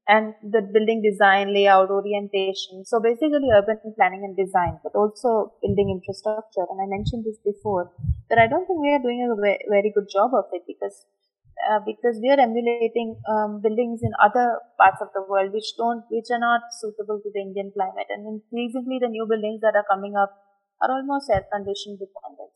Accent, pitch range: Indian, 205-235 Hz